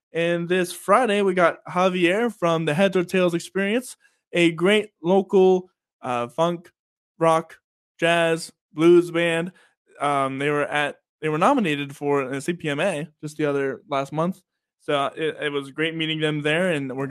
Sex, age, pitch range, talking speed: male, 20-39, 150-190 Hz, 160 wpm